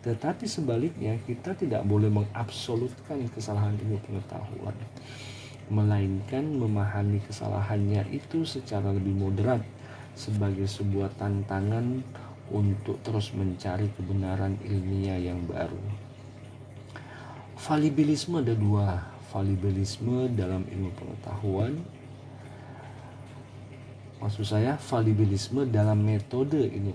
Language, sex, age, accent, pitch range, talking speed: Indonesian, male, 40-59, native, 105-125 Hz, 85 wpm